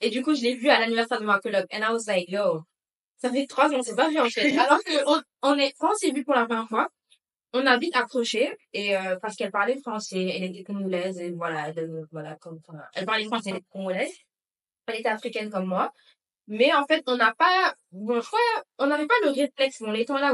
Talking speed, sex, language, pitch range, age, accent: 250 wpm, female, French, 185-245 Hz, 20-39, French